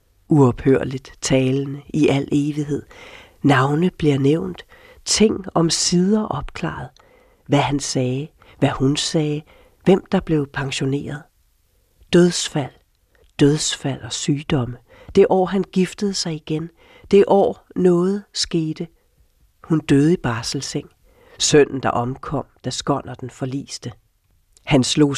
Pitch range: 130-175 Hz